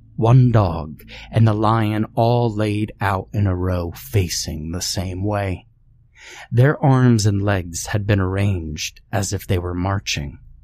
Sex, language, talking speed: male, English, 150 wpm